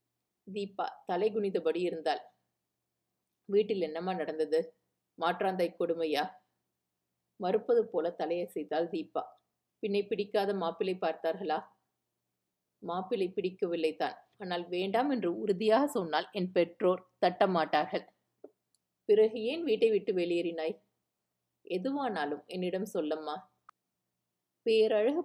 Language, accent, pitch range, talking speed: Tamil, native, 155-210 Hz, 85 wpm